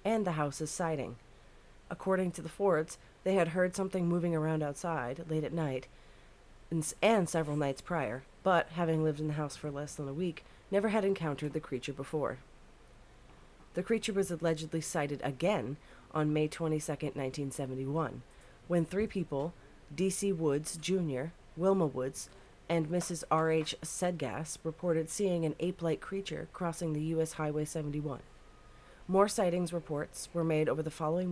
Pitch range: 145-175 Hz